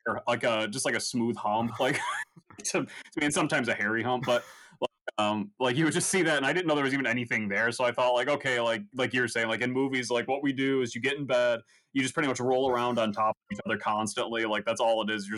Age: 20-39